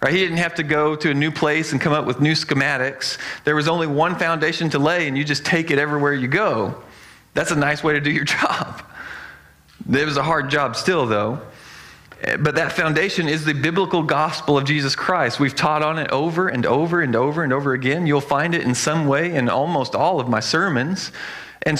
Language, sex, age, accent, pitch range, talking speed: English, male, 40-59, American, 135-170 Hz, 220 wpm